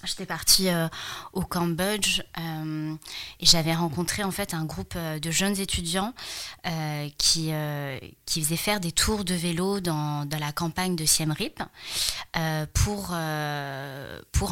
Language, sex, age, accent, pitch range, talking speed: French, female, 20-39, French, 160-190 Hz, 155 wpm